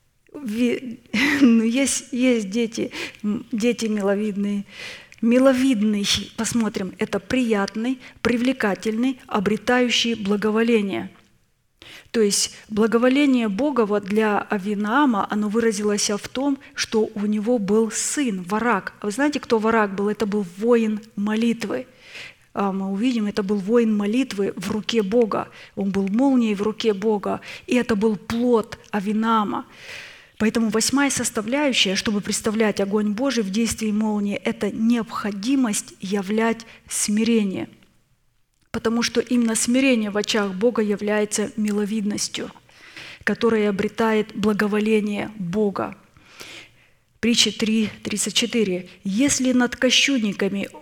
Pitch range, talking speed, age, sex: 210-240 Hz, 110 wpm, 20-39, female